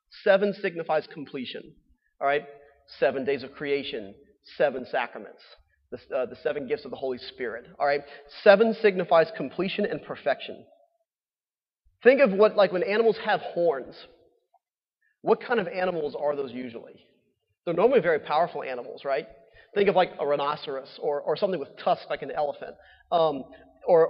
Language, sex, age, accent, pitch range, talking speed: English, male, 30-49, American, 165-235 Hz, 155 wpm